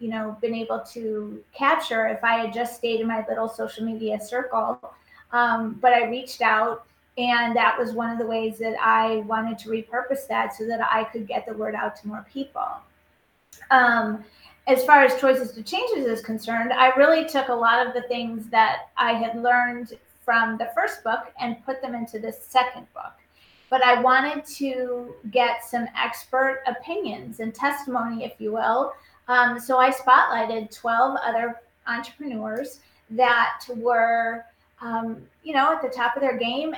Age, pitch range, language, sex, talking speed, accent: 30-49, 230-265 Hz, English, female, 180 wpm, American